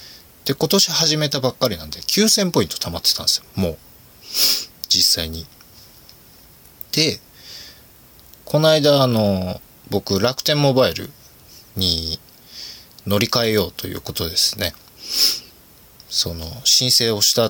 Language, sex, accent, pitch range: Japanese, male, native, 95-150 Hz